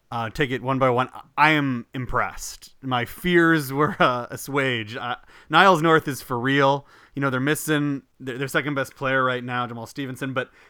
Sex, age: male, 30-49